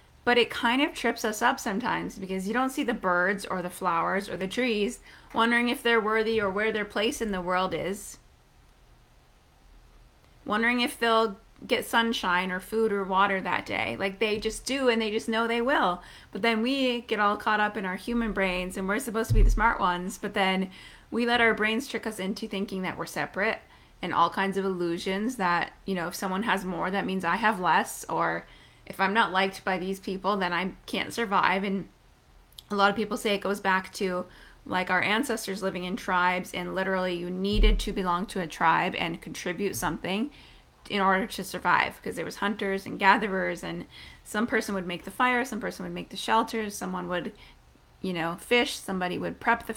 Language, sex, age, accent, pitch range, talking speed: English, female, 30-49, American, 185-225 Hz, 210 wpm